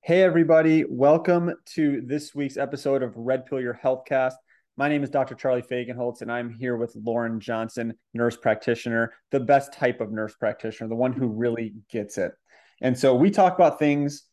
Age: 30-49